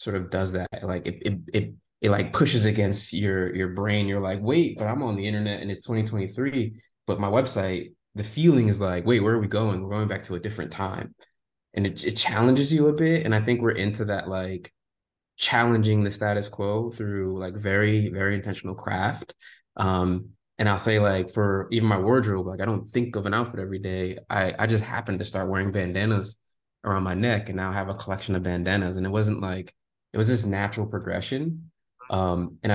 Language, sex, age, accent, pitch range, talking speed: English, male, 20-39, American, 95-115 Hz, 215 wpm